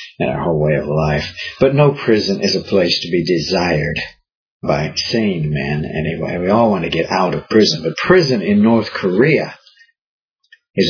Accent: American